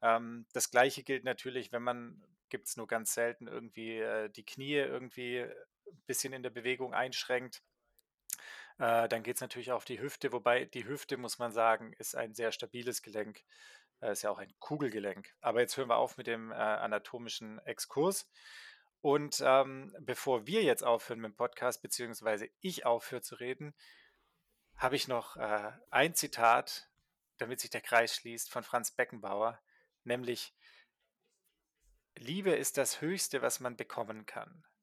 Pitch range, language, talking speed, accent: 115-140 Hz, German, 155 wpm, German